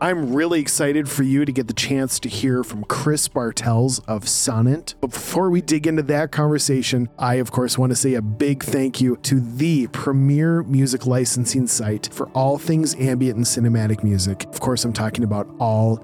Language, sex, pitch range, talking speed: English, male, 115-145 Hz, 195 wpm